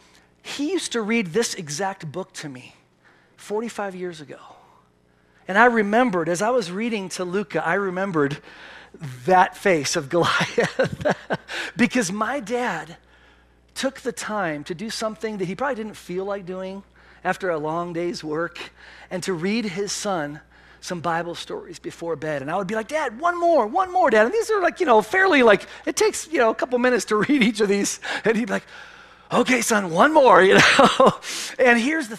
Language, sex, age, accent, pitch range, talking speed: English, male, 40-59, American, 170-230 Hz, 190 wpm